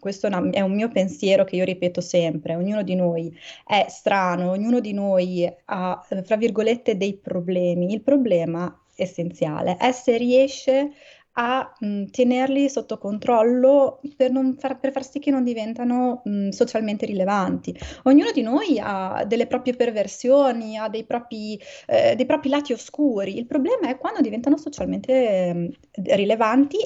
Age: 20-39